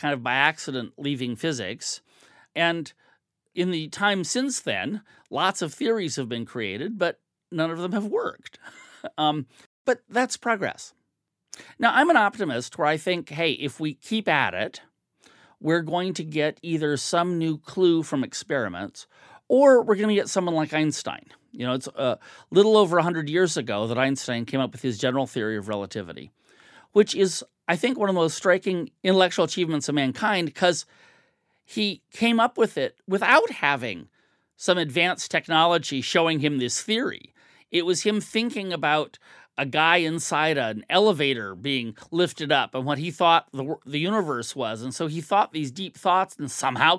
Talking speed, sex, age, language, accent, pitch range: 175 wpm, male, 40-59, English, American, 145-200 Hz